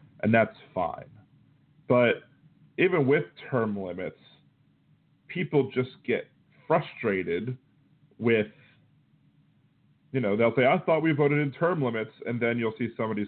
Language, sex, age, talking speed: English, male, 40-59, 130 wpm